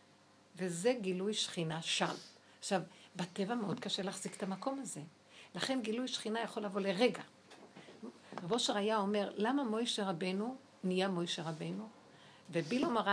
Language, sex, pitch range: Hebrew, female, 190-260 Hz